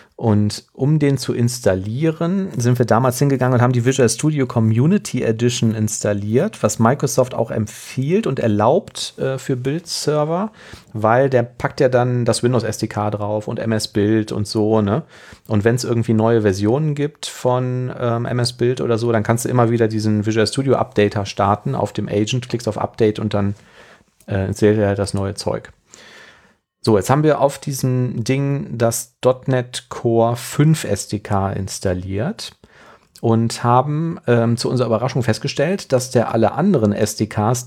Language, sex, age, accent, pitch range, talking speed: German, male, 40-59, German, 105-130 Hz, 165 wpm